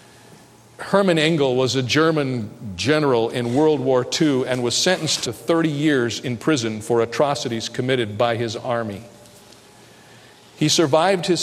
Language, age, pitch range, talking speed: English, 50-69, 130-175 Hz, 140 wpm